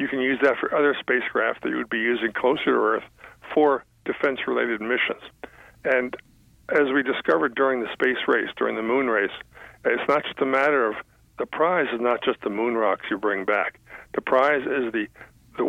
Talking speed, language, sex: 200 wpm, English, male